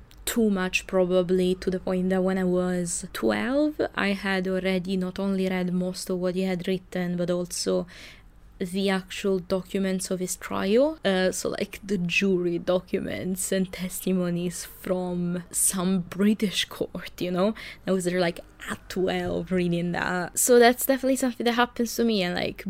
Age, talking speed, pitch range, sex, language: 20-39, 165 wpm, 185-210 Hz, female, English